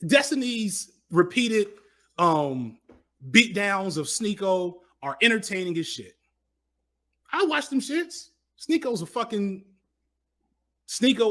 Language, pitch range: English, 120-185 Hz